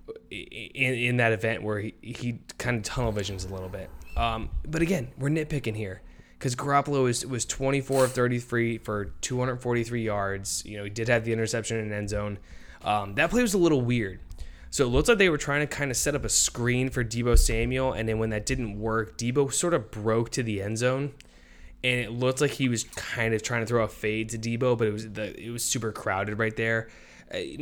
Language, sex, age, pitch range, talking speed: English, male, 20-39, 100-120 Hz, 225 wpm